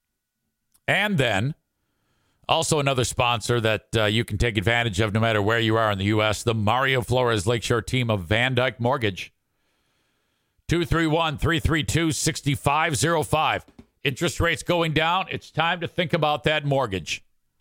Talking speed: 140 wpm